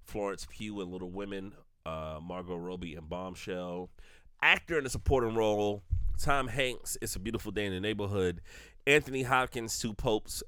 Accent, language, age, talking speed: American, English, 30-49, 160 wpm